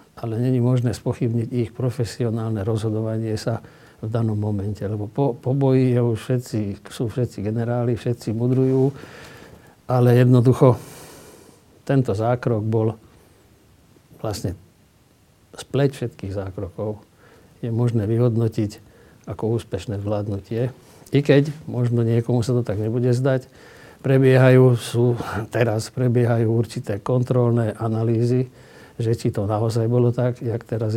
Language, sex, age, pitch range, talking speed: Slovak, male, 60-79, 110-125 Hz, 120 wpm